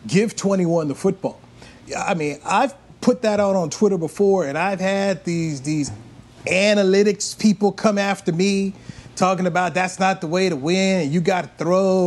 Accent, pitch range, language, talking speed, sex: American, 155-210 Hz, English, 185 wpm, male